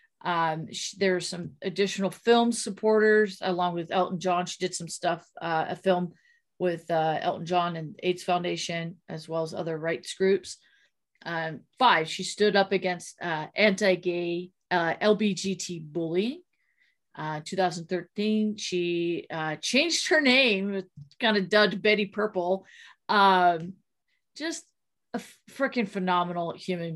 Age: 40-59